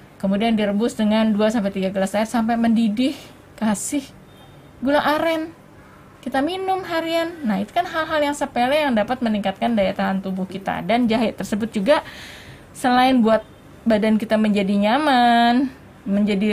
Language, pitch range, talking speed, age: Indonesian, 205-265 Hz, 140 wpm, 20-39